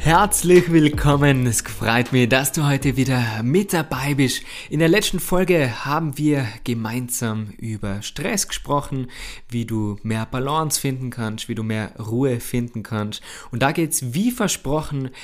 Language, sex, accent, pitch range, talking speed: German, male, German, 120-150 Hz, 160 wpm